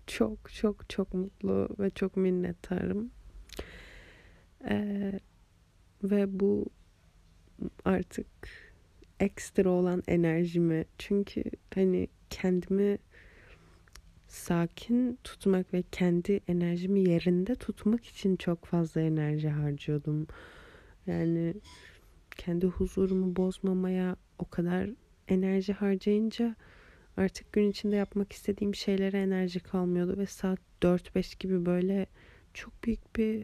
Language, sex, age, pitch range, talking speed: Turkish, female, 30-49, 165-205 Hz, 95 wpm